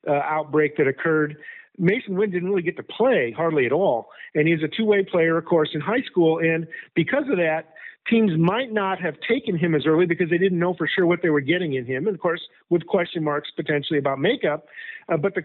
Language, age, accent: English, 50-69, American